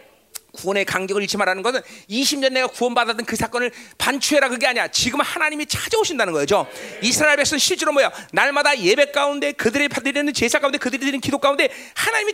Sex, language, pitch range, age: male, Korean, 275-360 Hz, 40-59